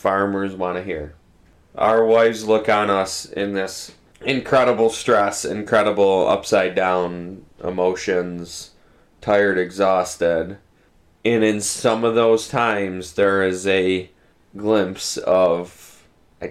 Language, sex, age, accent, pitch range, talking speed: English, male, 20-39, American, 95-120 Hz, 110 wpm